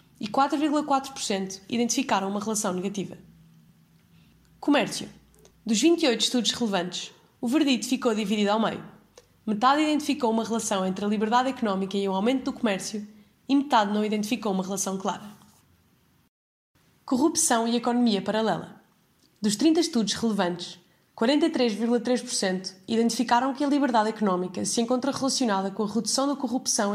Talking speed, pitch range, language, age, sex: 130 wpm, 195-250 Hz, Portuguese, 20-39, female